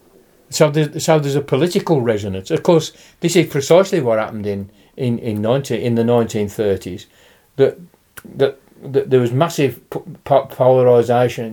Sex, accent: male, British